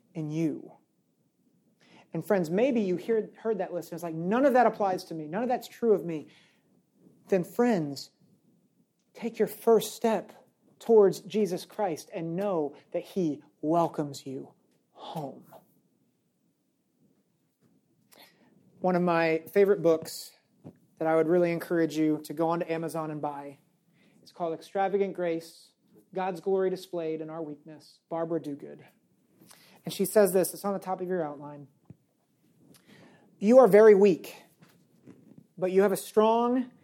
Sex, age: male, 40-59